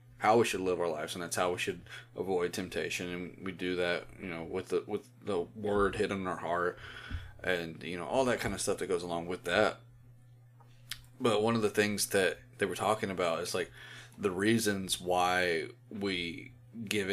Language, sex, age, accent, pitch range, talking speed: English, male, 30-49, American, 90-120 Hz, 205 wpm